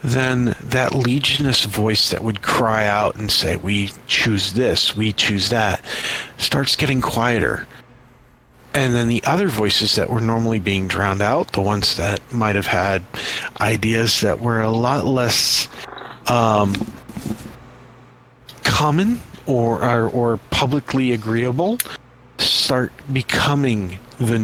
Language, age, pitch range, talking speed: English, 50-69, 105-125 Hz, 125 wpm